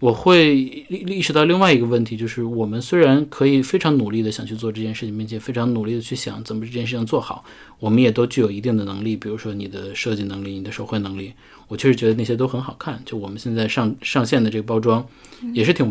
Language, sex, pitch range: Chinese, male, 110-135 Hz